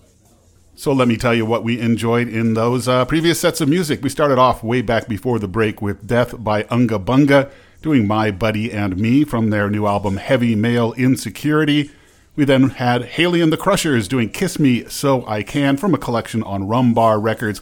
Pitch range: 110-140 Hz